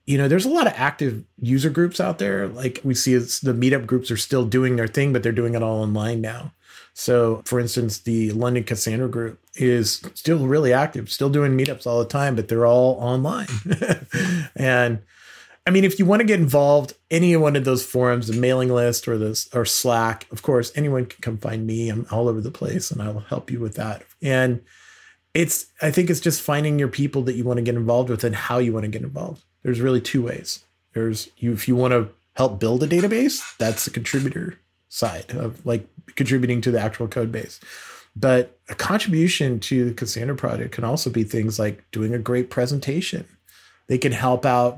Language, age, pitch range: English, 30-49, 115-140 Hz